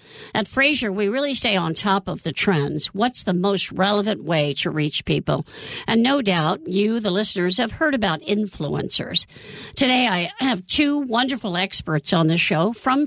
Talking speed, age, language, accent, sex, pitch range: 175 wpm, 50-69, English, American, female, 165-230 Hz